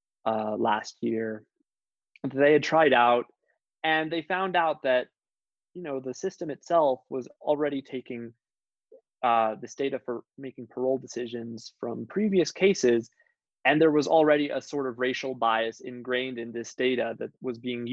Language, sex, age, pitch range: English, male, 20-39, 120-150 Hz